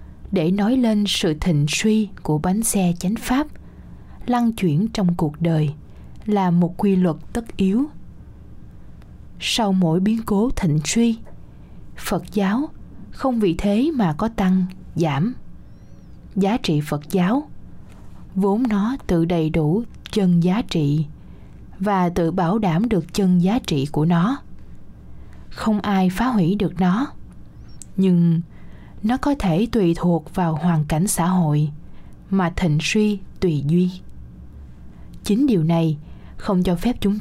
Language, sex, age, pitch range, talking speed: Vietnamese, female, 20-39, 160-210 Hz, 140 wpm